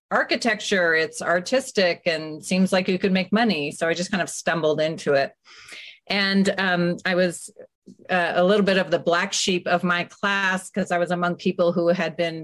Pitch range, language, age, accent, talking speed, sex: 160-195 Hz, English, 40-59, American, 200 wpm, female